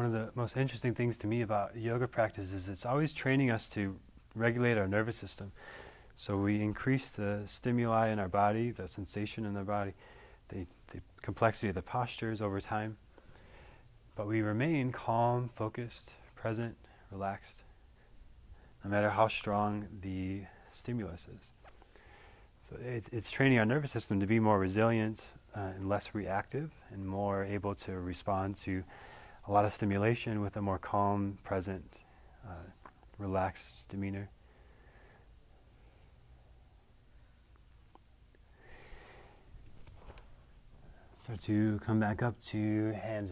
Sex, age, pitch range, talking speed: male, 30-49, 100-120 Hz, 135 wpm